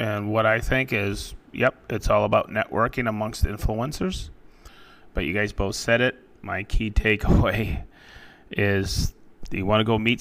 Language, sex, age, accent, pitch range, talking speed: English, male, 30-49, American, 100-120 Hz, 165 wpm